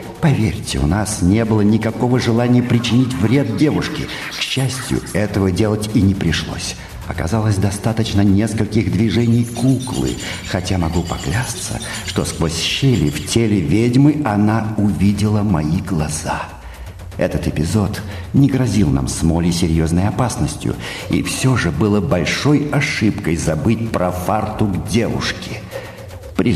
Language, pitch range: Russian, 90-115 Hz